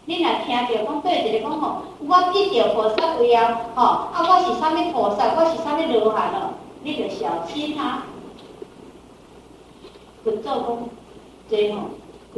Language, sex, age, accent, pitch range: Chinese, female, 50-69, American, 245-370 Hz